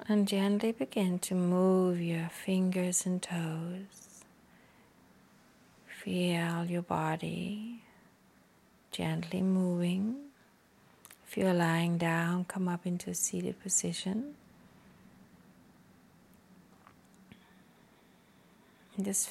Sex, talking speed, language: female, 80 wpm, English